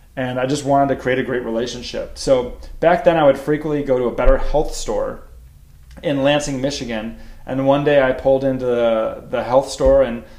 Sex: male